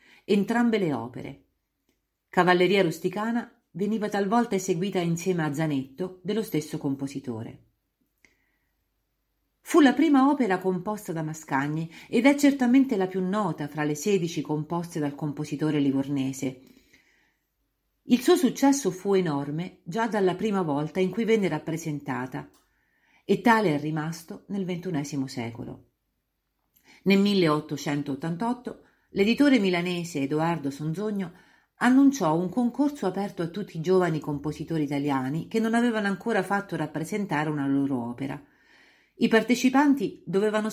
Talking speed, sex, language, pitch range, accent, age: 120 wpm, female, Italian, 150-210 Hz, native, 40-59